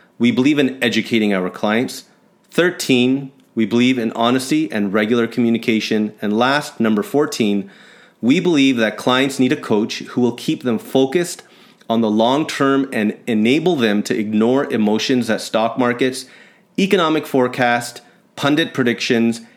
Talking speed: 145 wpm